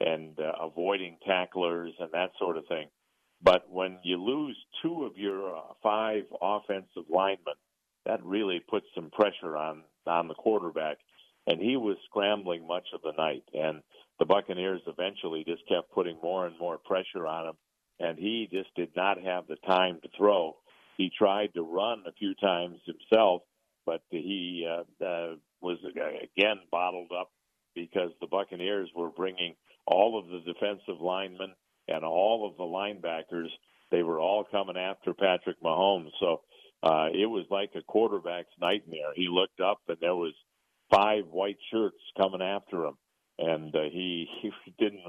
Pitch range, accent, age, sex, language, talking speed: 85-100 Hz, American, 50-69, male, English, 165 wpm